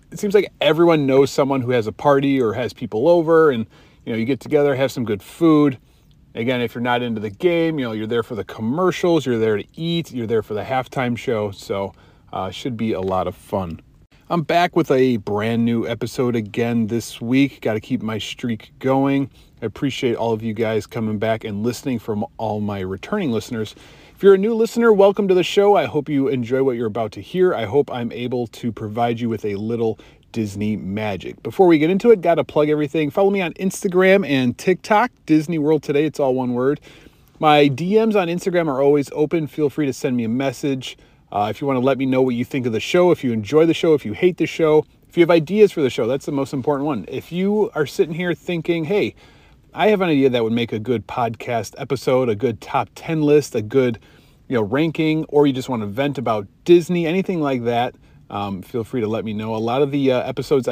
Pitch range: 115-160 Hz